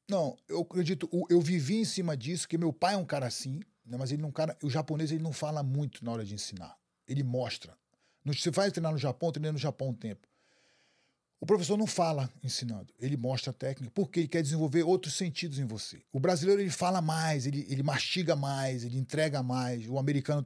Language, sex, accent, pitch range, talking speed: Portuguese, male, Brazilian, 130-170 Hz, 215 wpm